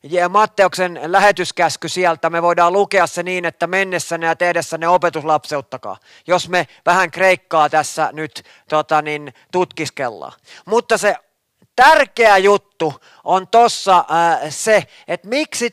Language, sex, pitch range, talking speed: Finnish, male, 170-220 Hz, 120 wpm